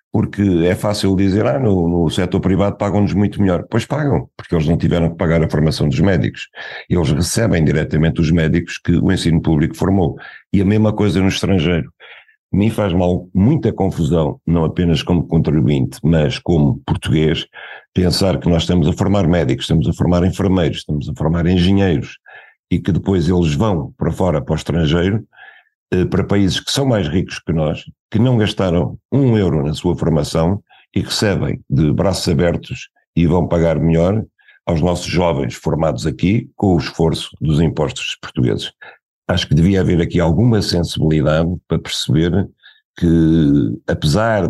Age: 50-69